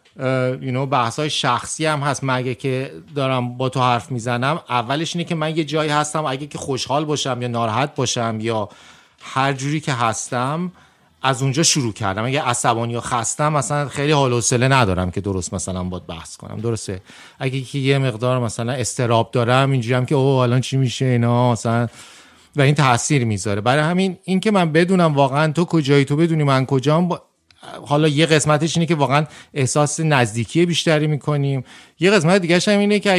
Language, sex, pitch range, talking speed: Persian, male, 125-155 Hz, 175 wpm